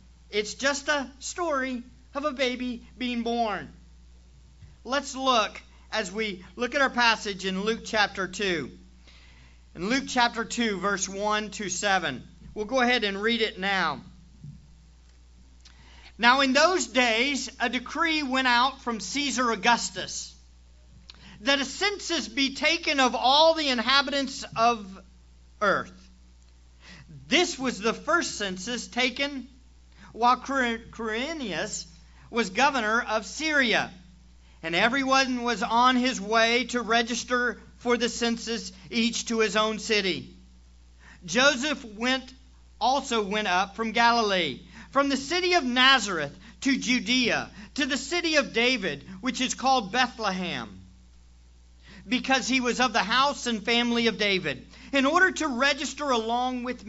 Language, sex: English, male